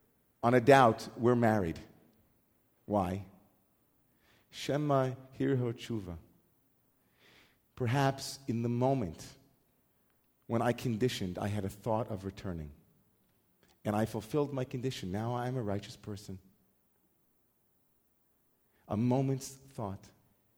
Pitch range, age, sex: 105-125 Hz, 40-59, male